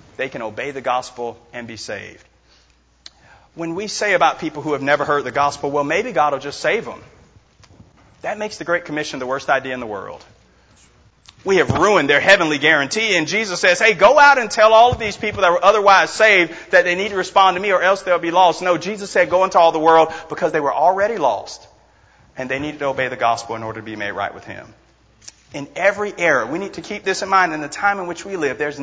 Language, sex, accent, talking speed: English, male, American, 245 wpm